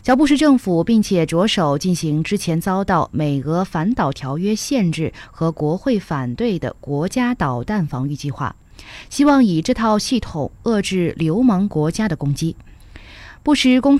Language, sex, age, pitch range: Chinese, female, 20-39, 155-220 Hz